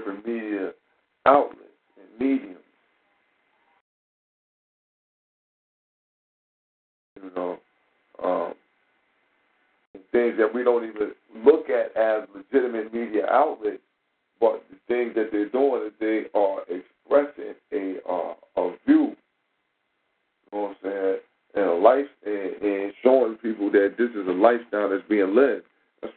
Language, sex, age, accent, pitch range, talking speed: English, male, 50-69, American, 105-120 Hz, 120 wpm